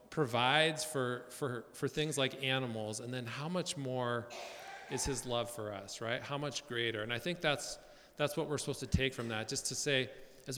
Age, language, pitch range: 40-59, English, 110-135 Hz